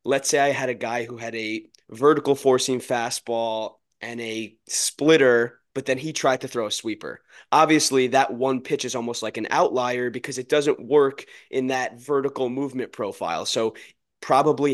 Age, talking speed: 20-39, 175 wpm